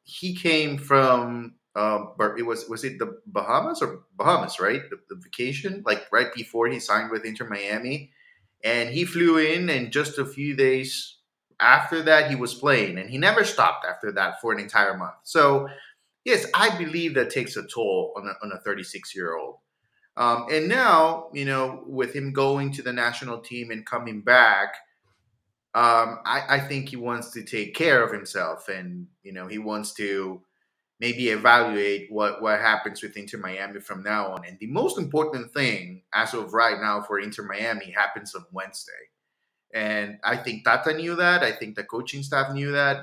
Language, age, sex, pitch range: English, 30-49, male, 110-145 Hz